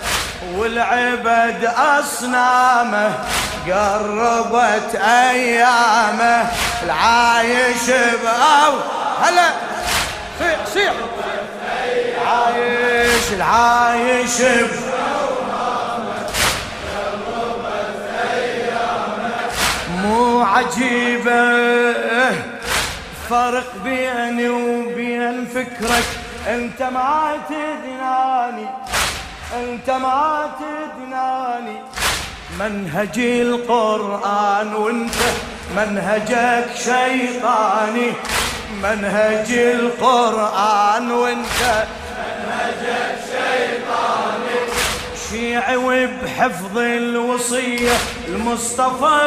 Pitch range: 235-250 Hz